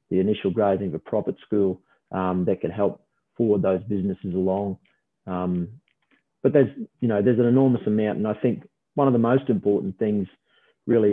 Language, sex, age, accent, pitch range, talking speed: English, male, 30-49, Australian, 100-115 Hz, 180 wpm